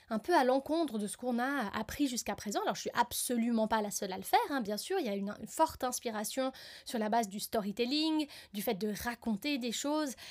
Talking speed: 245 wpm